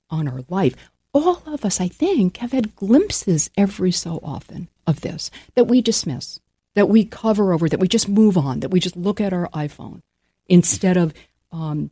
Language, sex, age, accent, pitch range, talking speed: English, female, 50-69, American, 145-205 Hz, 190 wpm